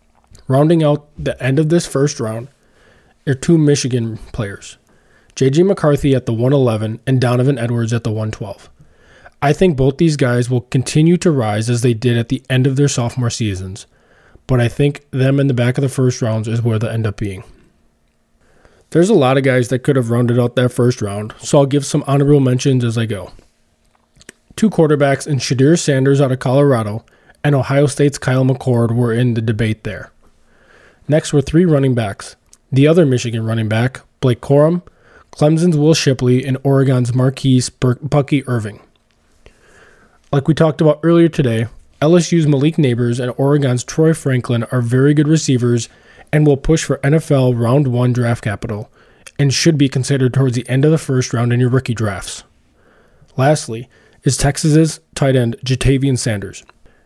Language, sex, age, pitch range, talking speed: English, male, 20-39, 120-145 Hz, 175 wpm